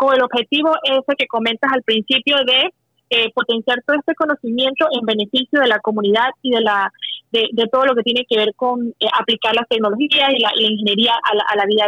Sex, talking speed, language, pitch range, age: female, 225 wpm, Spanish, 230-280 Hz, 30-49